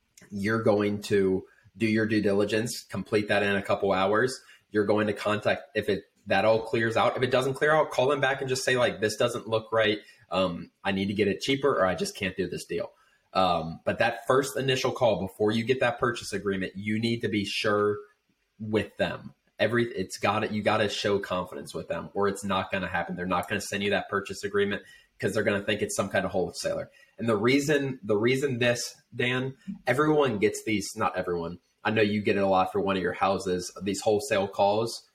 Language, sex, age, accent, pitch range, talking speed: English, male, 20-39, American, 100-120 Hz, 230 wpm